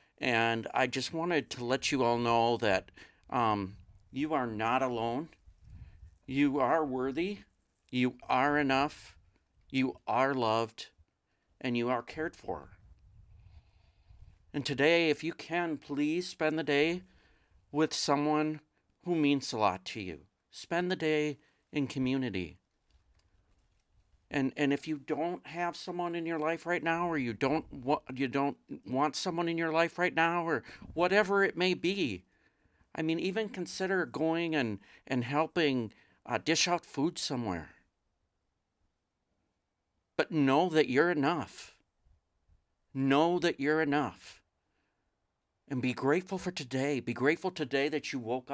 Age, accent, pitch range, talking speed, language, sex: 50-69, American, 100-160 Hz, 140 wpm, English, male